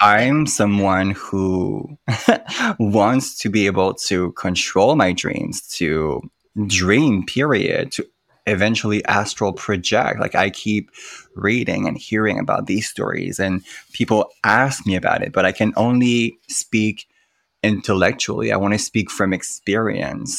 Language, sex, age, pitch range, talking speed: English, male, 20-39, 95-115 Hz, 130 wpm